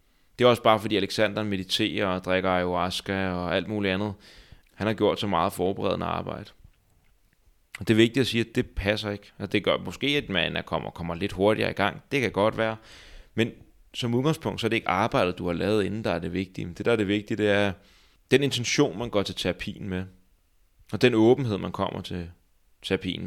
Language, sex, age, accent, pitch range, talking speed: Danish, male, 30-49, native, 90-110 Hz, 215 wpm